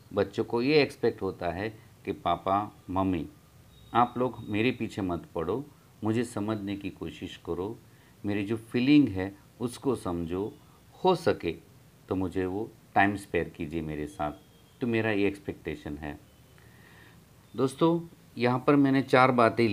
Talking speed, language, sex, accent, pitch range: 145 wpm, Hindi, male, native, 100-125 Hz